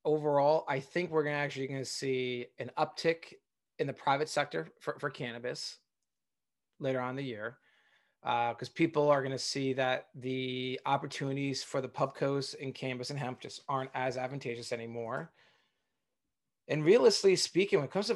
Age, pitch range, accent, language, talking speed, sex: 30-49, 135-165 Hz, American, English, 165 wpm, male